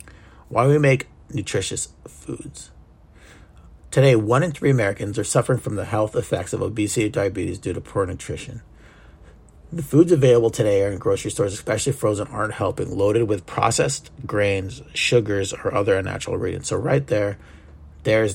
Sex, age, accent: male, 30-49, American